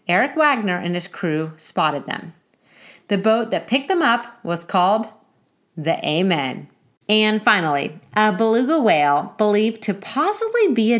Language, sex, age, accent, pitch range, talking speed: English, female, 30-49, American, 170-225 Hz, 145 wpm